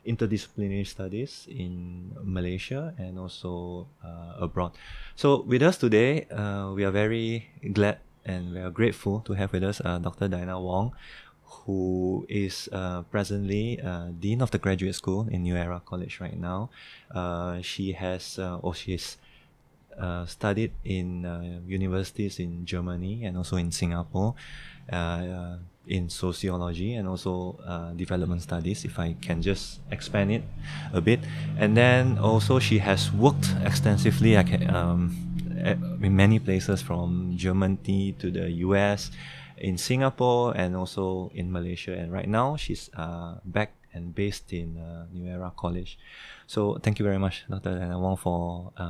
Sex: male